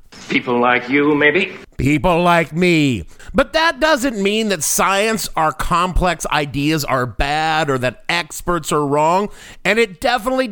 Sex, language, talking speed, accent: male, English, 150 wpm, American